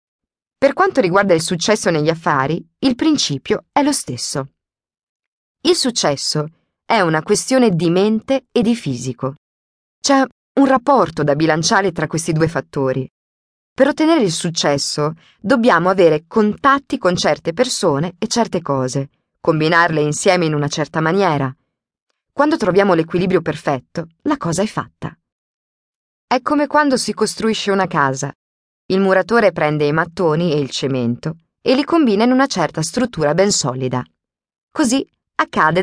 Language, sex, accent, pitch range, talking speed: Italian, female, native, 150-230 Hz, 140 wpm